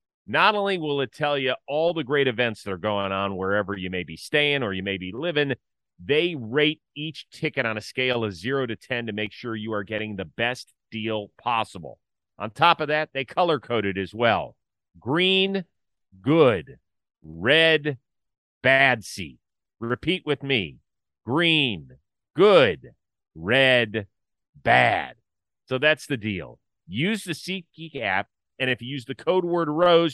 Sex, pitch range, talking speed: male, 110-155 Hz, 165 wpm